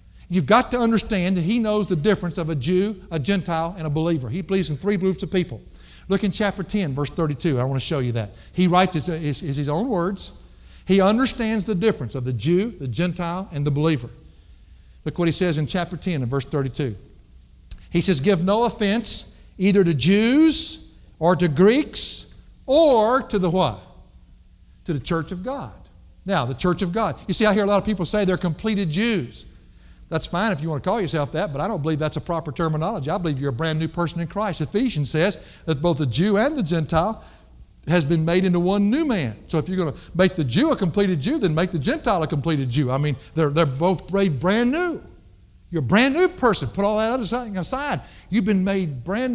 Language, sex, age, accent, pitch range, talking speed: English, male, 60-79, American, 145-205 Hz, 220 wpm